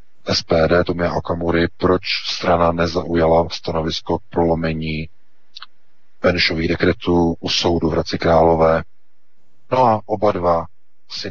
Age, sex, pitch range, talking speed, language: 40-59, male, 85-95 Hz, 105 wpm, Czech